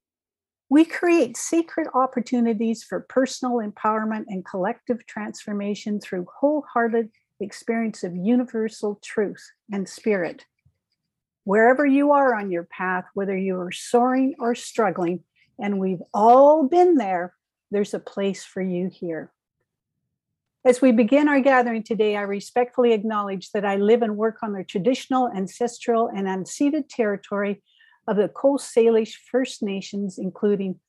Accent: American